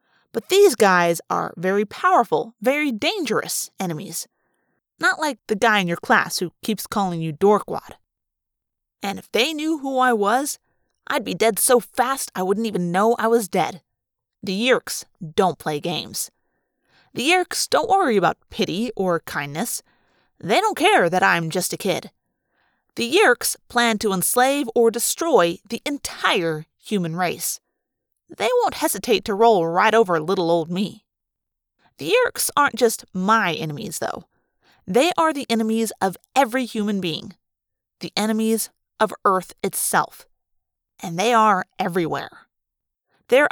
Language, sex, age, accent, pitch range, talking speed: English, female, 30-49, American, 190-270 Hz, 150 wpm